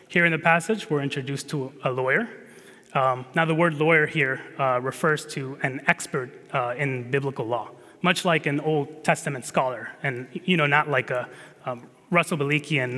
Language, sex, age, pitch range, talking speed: English, male, 20-39, 135-165 Hz, 180 wpm